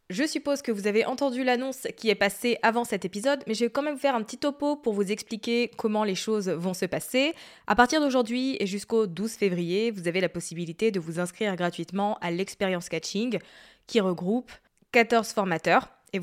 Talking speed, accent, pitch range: 200 wpm, French, 185-240 Hz